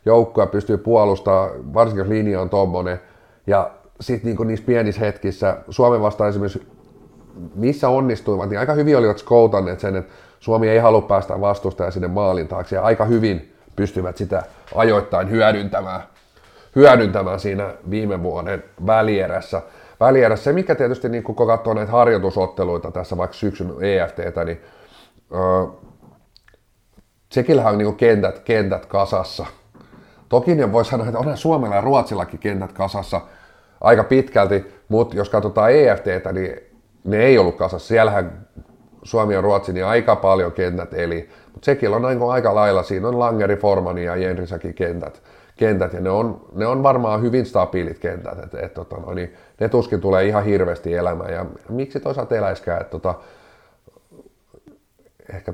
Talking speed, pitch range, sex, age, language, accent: 145 wpm, 95-115 Hz, male, 30-49, Finnish, native